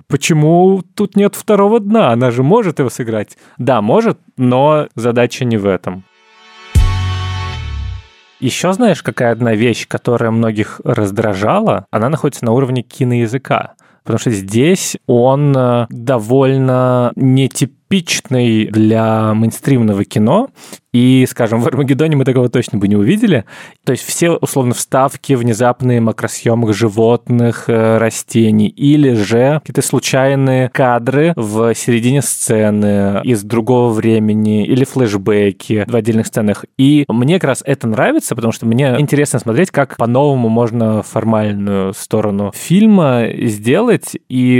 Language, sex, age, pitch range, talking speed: Russian, male, 20-39, 110-140 Hz, 125 wpm